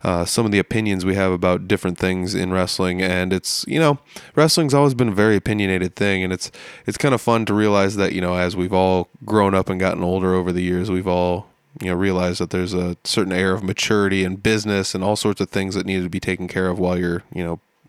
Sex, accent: male, American